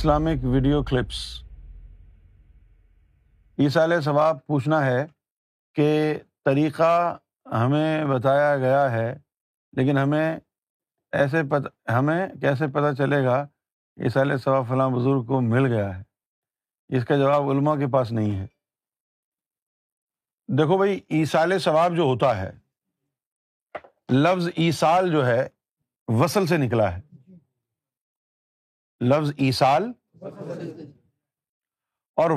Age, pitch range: 50-69, 125-165 Hz